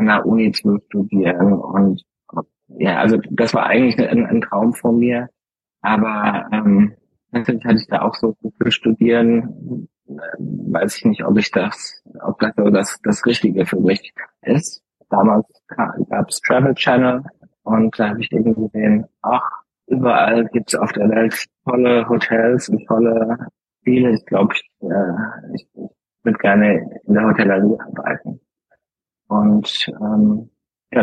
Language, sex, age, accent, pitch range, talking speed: German, male, 20-39, German, 105-120 Hz, 150 wpm